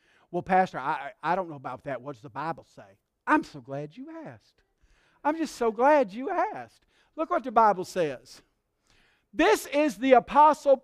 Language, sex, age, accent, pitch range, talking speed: English, male, 50-69, American, 185-275 Hz, 185 wpm